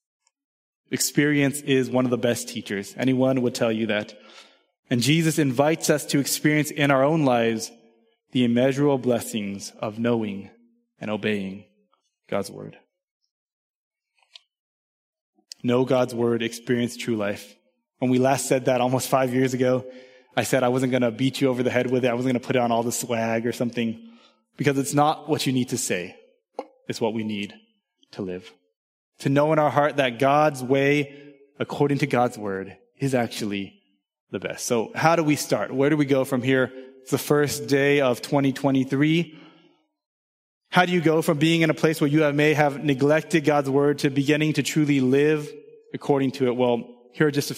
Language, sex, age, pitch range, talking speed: English, male, 20-39, 120-150 Hz, 185 wpm